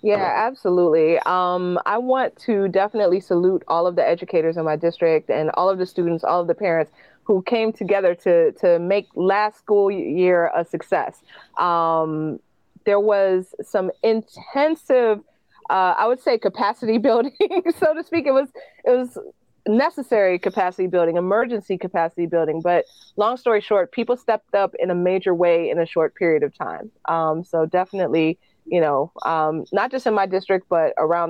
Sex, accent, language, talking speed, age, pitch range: female, American, English, 170 wpm, 30-49, 170-220 Hz